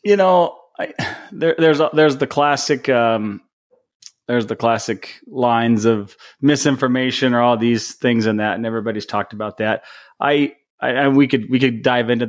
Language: English